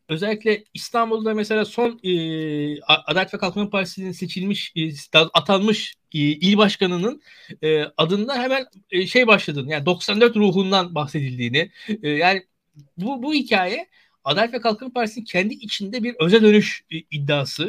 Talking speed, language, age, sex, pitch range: 130 wpm, Turkish, 60-79, male, 160-220 Hz